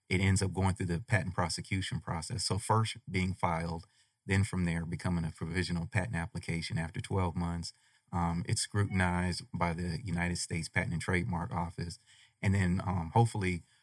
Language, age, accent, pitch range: English, 30-49, American, 85-105 Hz